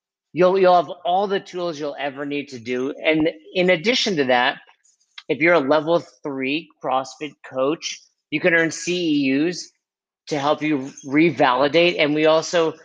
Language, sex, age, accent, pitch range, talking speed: English, male, 50-69, American, 140-165 Hz, 160 wpm